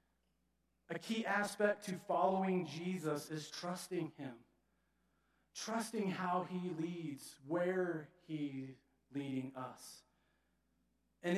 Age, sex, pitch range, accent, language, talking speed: 40-59, male, 125-180 Hz, American, English, 95 wpm